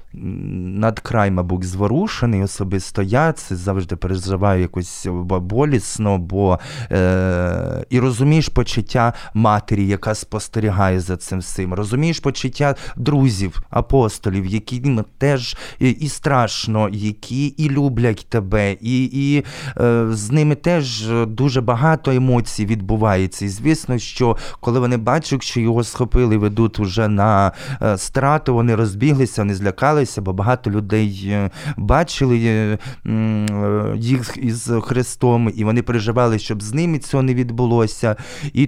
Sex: male